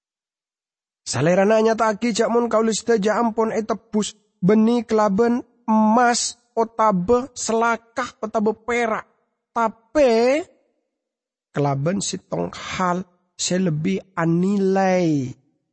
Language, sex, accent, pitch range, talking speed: English, male, Indonesian, 150-225 Hz, 80 wpm